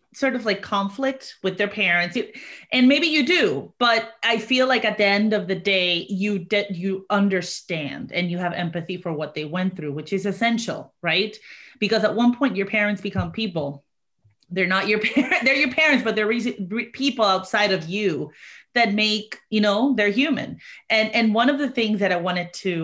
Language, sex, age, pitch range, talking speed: English, female, 30-49, 185-235 Hz, 200 wpm